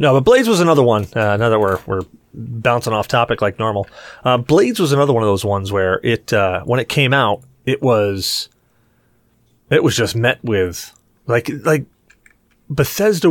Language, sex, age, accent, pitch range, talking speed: English, male, 30-49, American, 105-145 Hz, 185 wpm